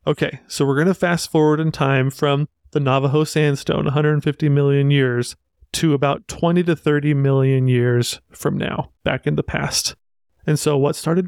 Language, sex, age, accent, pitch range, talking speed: English, male, 30-49, American, 135-155 Hz, 175 wpm